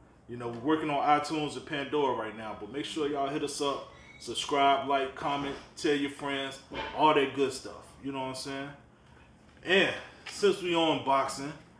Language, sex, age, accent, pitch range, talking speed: English, male, 30-49, American, 125-155 Hz, 190 wpm